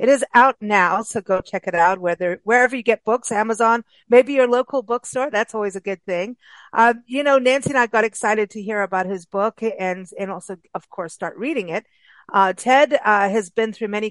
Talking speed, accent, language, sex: 220 wpm, American, English, female